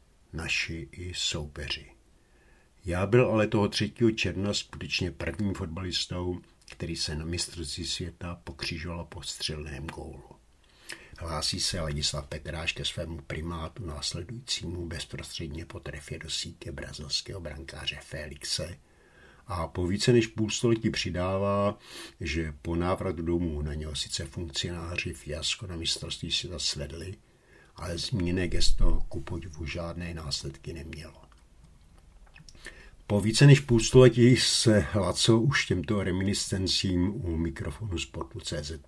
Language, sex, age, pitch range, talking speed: Czech, male, 60-79, 75-100 Hz, 120 wpm